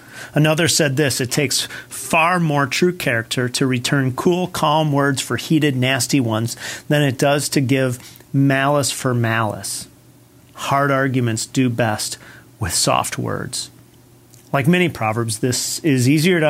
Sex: male